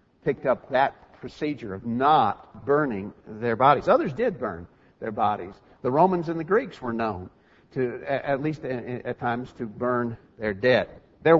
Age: 50-69